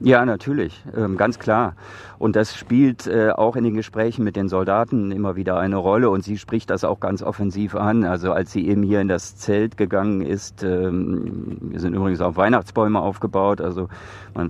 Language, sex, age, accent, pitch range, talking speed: German, male, 50-69, German, 100-110 Hz, 180 wpm